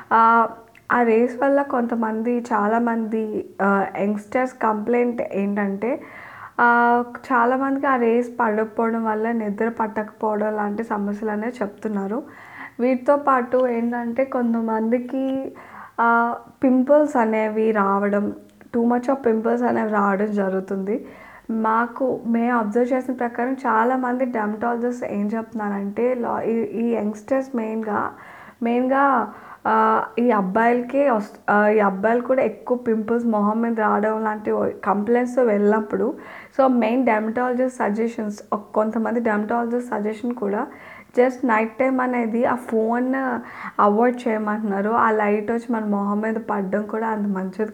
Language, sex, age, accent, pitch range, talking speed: English, female, 20-39, Indian, 210-245 Hz, 95 wpm